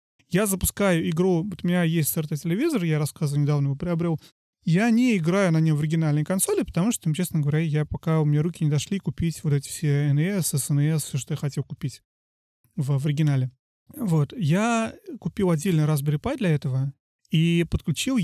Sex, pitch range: male, 150-180 Hz